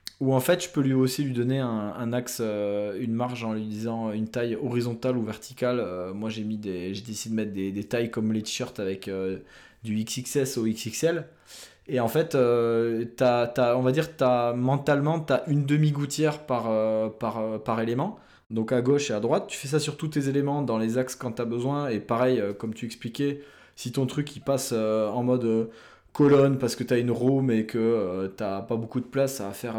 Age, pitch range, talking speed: 20-39, 110-135 Hz, 240 wpm